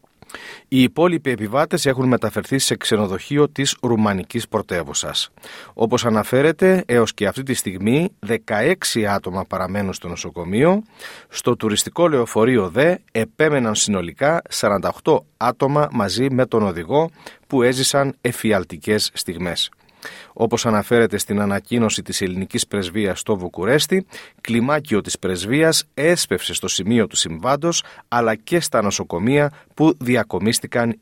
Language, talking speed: Greek, 120 wpm